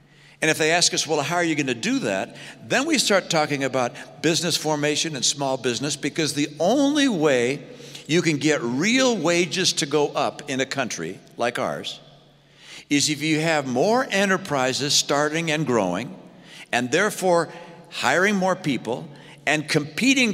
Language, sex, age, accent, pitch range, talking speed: English, male, 60-79, American, 145-195 Hz, 160 wpm